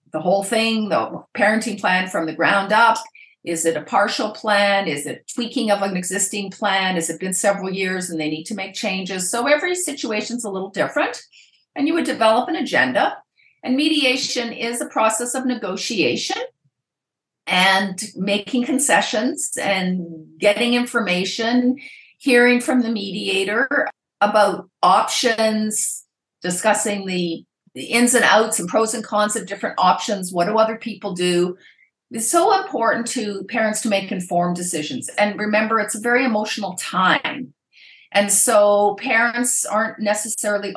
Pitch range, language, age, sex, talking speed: 190-235 Hz, English, 50-69, female, 155 wpm